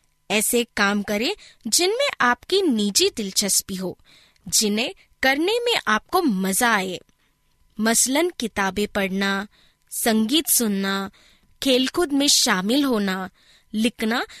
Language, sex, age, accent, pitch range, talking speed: Hindi, female, 20-39, native, 205-305 Hz, 95 wpm